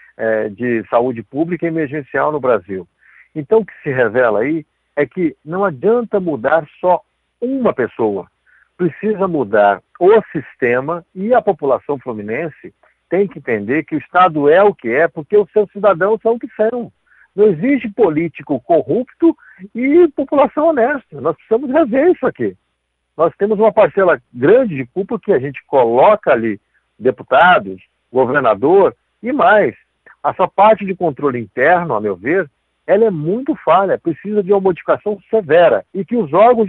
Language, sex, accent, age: Portuguese, male, Brazilian, 60-79